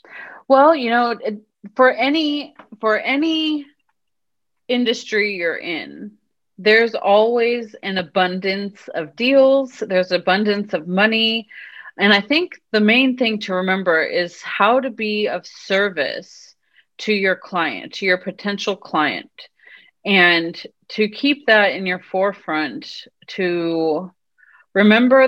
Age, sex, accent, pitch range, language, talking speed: 30-49, female, American, 185-240 Hz, English, 115 wpm